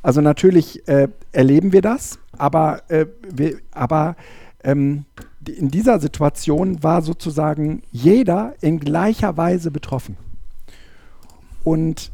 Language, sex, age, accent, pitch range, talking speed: German, male, 50-69, German, 125-170 Hz, 100 wpm